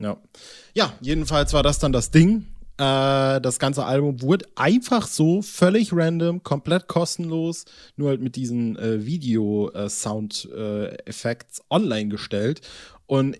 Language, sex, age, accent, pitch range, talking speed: German, male, 20-39, German, 115-145 Hz, 135 wpm